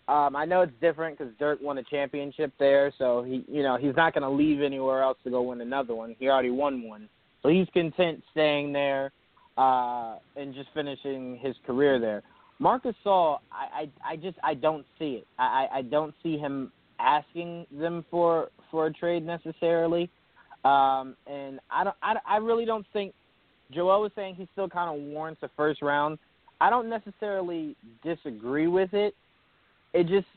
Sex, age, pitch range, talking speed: male, 30-49, 130-170 Hz, 185 wpm